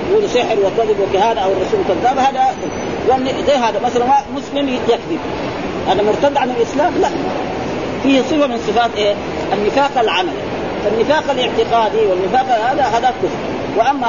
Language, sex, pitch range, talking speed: Arabic, female, 220-275 Hz, 140 wpm